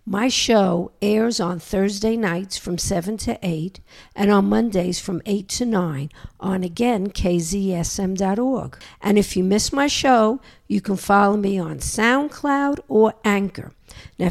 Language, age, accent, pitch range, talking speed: English, 60-79, American, 180-225 Hz, 145 wpm